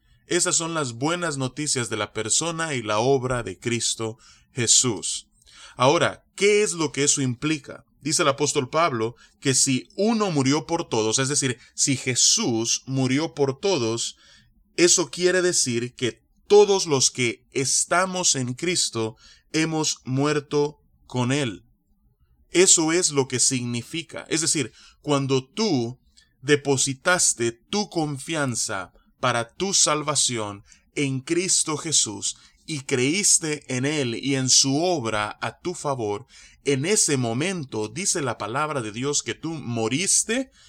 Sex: male